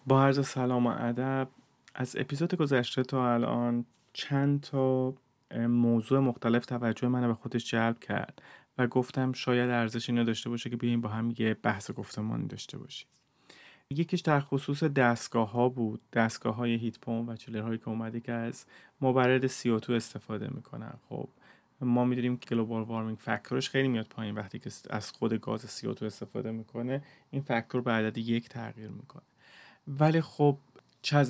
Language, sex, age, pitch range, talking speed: Persian, male, 30-49, 115-130 Hz, 155 wpm